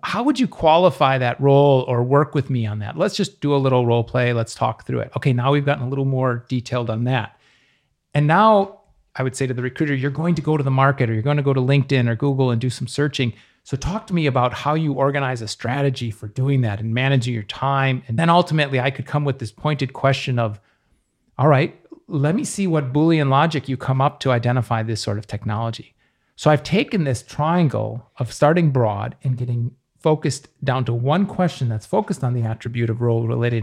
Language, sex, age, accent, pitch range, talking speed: English, male, 40-59, American, 125-150 Hz, 230 wpm